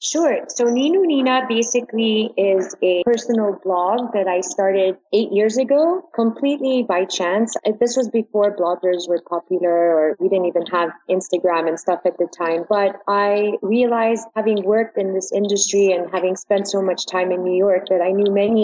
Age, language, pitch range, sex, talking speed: 30-49, English, 185-215 Hz, female, 180 wpm